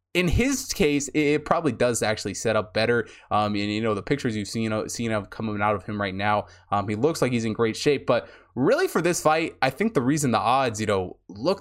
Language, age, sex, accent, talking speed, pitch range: English, 20-39, male, American, 255 wpm, 105-145 Hz